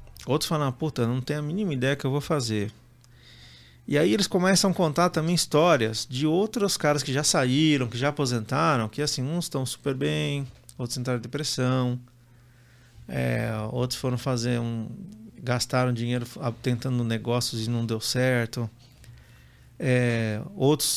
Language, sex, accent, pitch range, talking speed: Portuguese, male, Brazilian, 120-145 Hz, 150 wpm